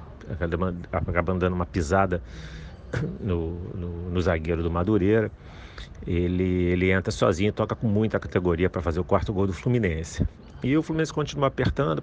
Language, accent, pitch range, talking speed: Portuguese, Brazilian, 90-105 Hz, 150 wpm